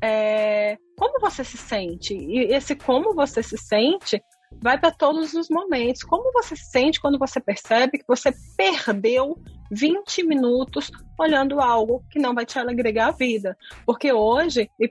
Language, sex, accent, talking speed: Portuguese, female, Brazilian, 160 wpm